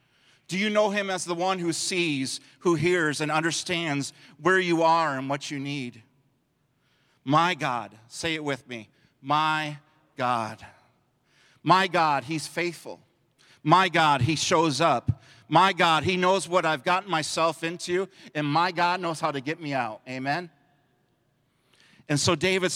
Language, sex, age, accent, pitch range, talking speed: English, male, 40-59, American, 130-175 Hz, 155 wpm